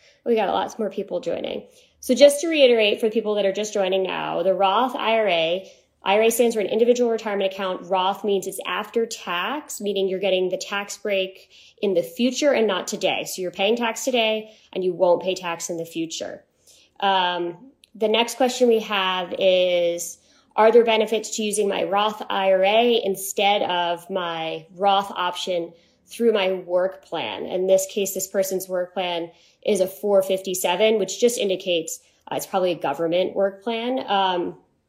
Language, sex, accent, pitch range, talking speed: English, female, American, 185-230 Hz, 175 wpm